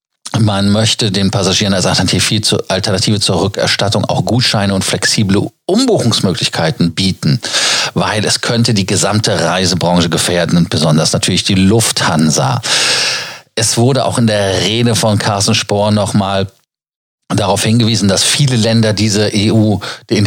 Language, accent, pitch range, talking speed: German, German, 95-115 Hz, 140 wpm